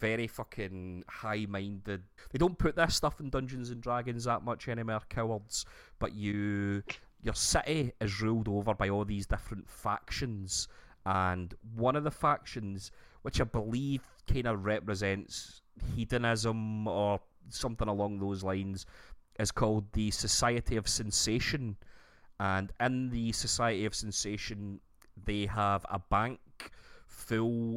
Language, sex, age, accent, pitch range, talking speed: English, male, 30-49, British, 100-115 Hz, 135 wpm